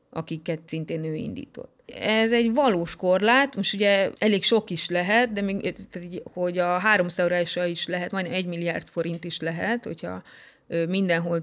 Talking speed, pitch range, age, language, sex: 140 wpm, 170-215 Hz, 20-39, Hungarian, female